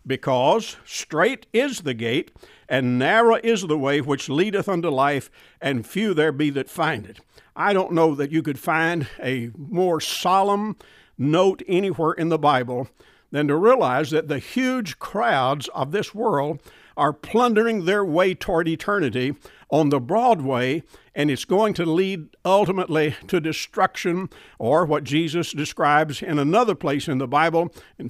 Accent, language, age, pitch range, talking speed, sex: American, English, 60-79, 140-190 Hz, 160 wpm, male